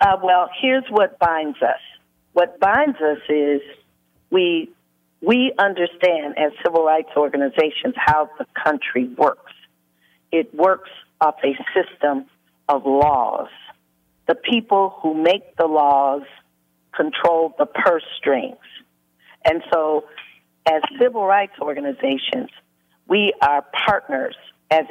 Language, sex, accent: English, female, American